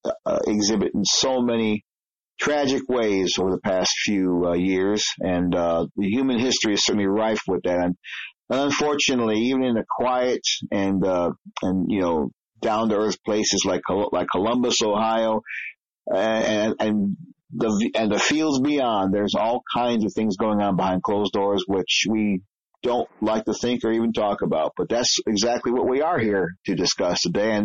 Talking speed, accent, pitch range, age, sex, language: 175 wpm, American, 100-115 Hz, 40-59, male, English